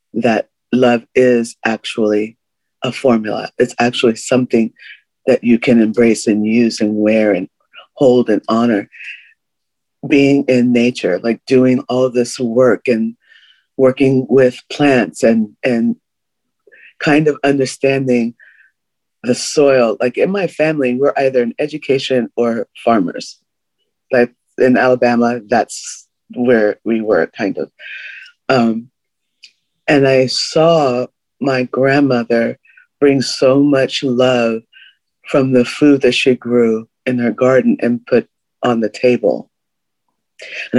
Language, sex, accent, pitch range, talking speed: English, female, American, 115-135 Hz, 125 wpm